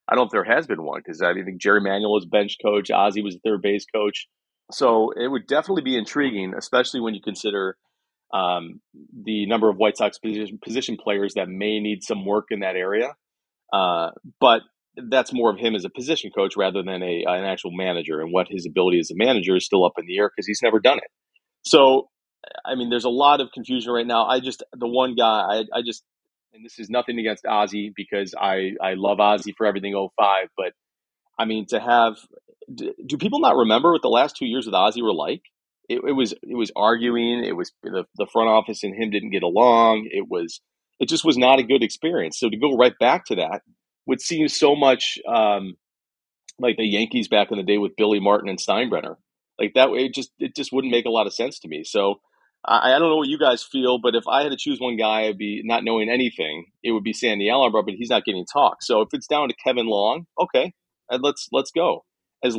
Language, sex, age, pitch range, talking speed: English, male, 30-49, 105-130 Hz, 235 wpm